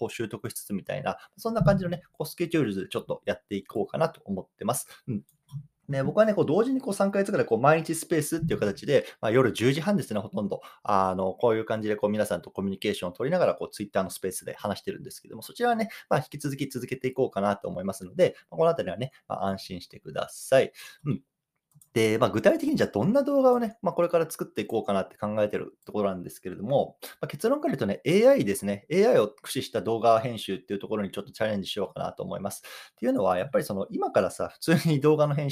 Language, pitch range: Japanese, 105-170 Hz